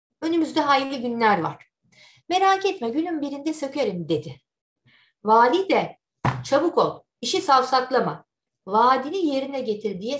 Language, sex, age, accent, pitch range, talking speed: Turkish, female, 50-69, native, 215-290 Hz, 120 wpm